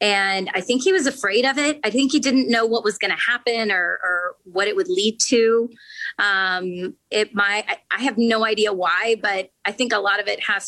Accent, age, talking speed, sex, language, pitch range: American, 30-49, 235 wpm, female, English, 200-260 Hz